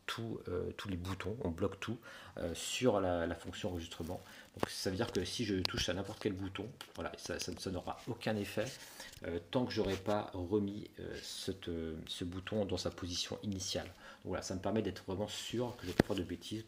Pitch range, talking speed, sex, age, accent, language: 90-105 Hz, 225 wpm, male, 40-59, French, French